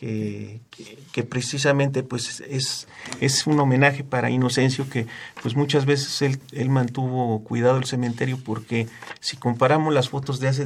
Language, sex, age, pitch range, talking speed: Spanish, male, 40-59, 125-150 Hz, 160 wpm